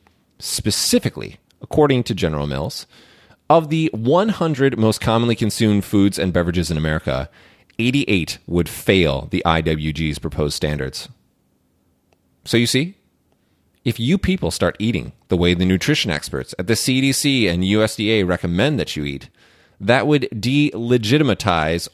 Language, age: English, 30-49